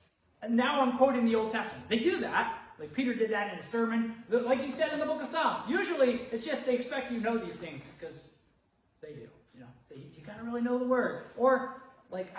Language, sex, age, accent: English, male, 30-49, American